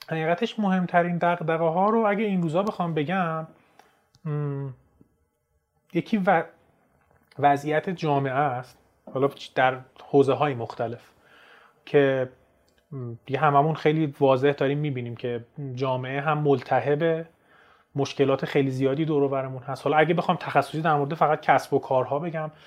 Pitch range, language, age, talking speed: 135-175 Hz, Persian, 30-49, 125 wpm